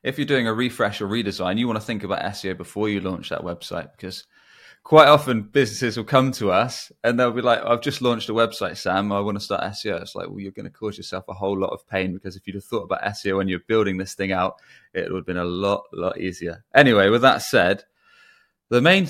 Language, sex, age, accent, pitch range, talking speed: English, male, 20-39, British, 95-110 Hz, 255 wpm